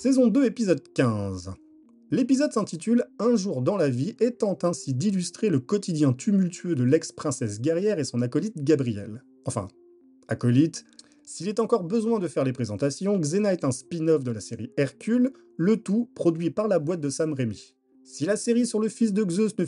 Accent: French